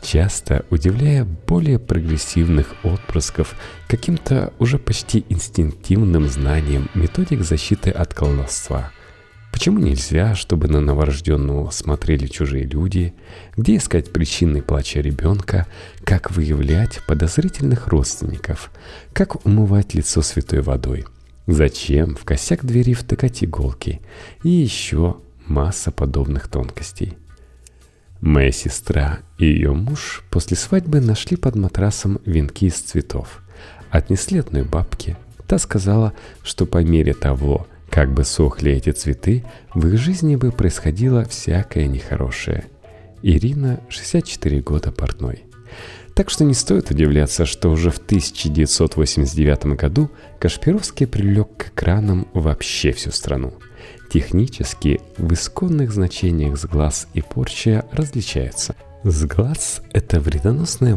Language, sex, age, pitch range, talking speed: Russian, male, 40-59, 75-110 Hz, 110 wpm